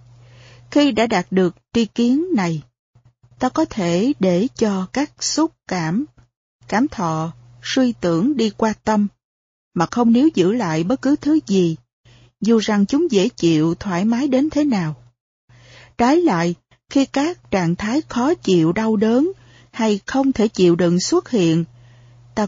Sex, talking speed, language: female, 160 wpm, Vietnamese